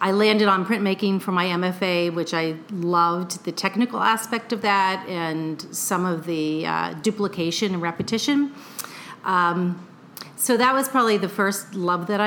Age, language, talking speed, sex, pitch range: 40-59, English, 155 wpm, female, 175-215 Hz